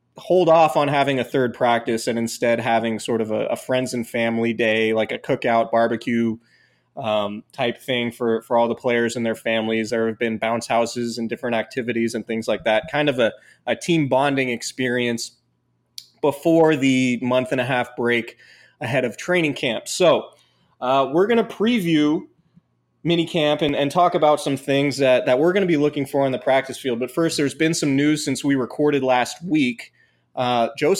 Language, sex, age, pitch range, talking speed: English, male, 20-39, 120-155 Hz, 195 wpm